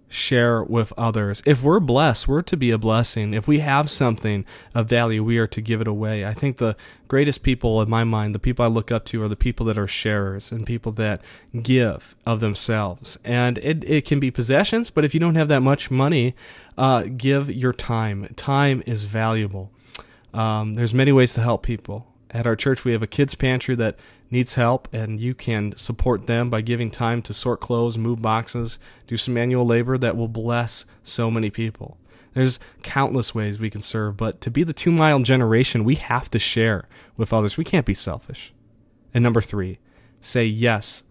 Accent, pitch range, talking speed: American, 110-130 Hz, 200 wpm